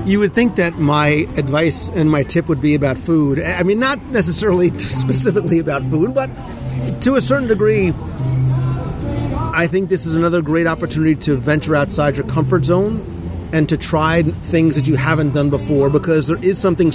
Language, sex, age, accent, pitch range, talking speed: English, male, 40-59, American, 145-180 Hz, 180 wpm